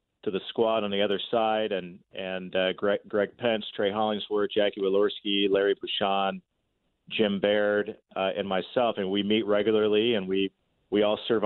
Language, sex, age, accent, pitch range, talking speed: English, male, 40-59, American, 105-120 Hz, 175 wpm